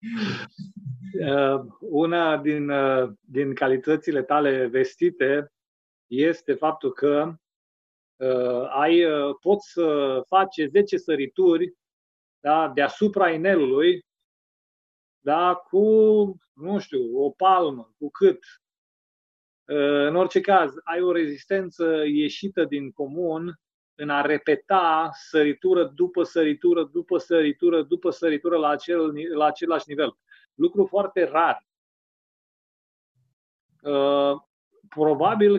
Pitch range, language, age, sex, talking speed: 145-190 Hz, Romanian, 30-49, male, 90 wpm